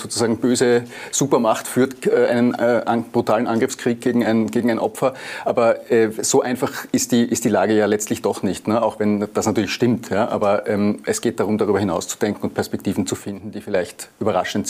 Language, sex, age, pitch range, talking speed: German, male, 30-49, 110-120 Hz, 205 wpm